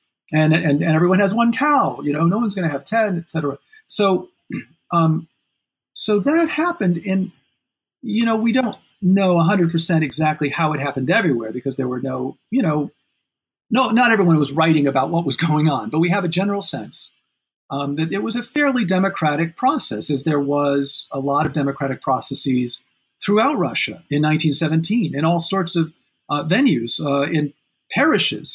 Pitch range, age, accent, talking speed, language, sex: 145-200 Hz, 40-59, American, 185 wpm, English, male